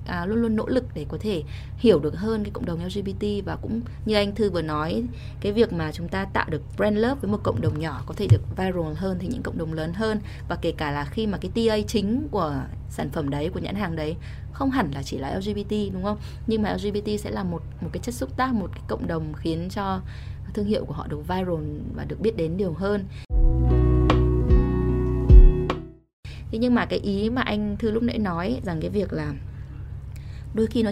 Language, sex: Vietnamese, female